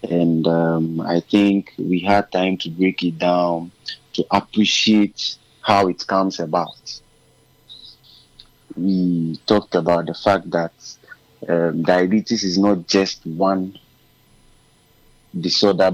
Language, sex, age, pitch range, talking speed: English, male, 30-49, 85-100 Hz, 115 wpm